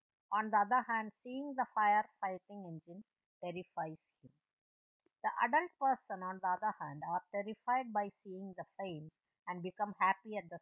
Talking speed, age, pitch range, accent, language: 165 wpm, 50-69, 180-260 Hz, Indian, English